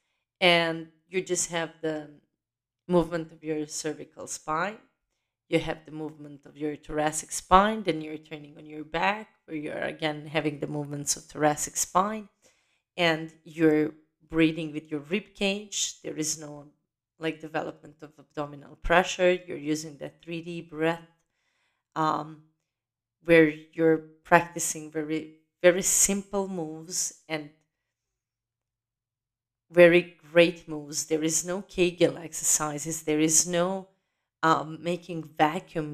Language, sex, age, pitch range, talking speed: English, female, 30-49, 150-175 Hz, 125 wpm